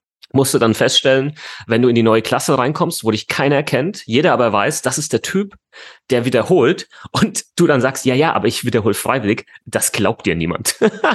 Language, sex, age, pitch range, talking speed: German, male, 30-49, 115-150 Hz, 200 wpm